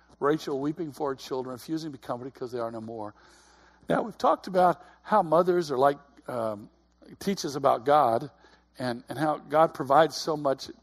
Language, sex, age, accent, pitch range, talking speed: English, male, 60-79, American, 100-170 Hz, 185 wpm